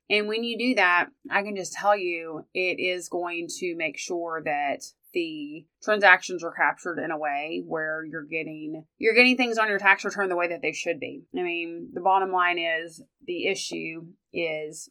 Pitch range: 175-225 Hz